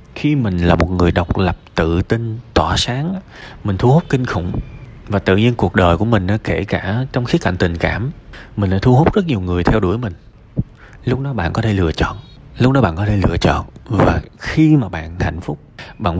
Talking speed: 225 wpm